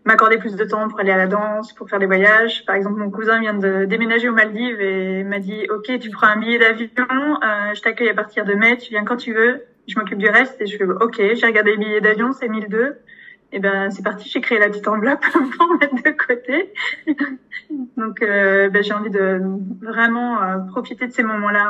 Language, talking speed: French, 240 wpm